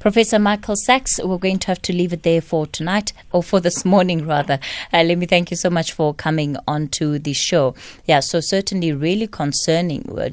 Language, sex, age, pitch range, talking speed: English, female, 20-39, 145-175 Hz, 215 wpm